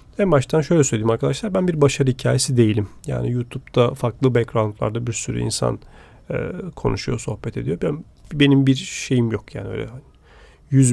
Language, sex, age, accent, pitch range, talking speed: Turkish, male, 40-59, native, 115-140 Hz, 160 wpm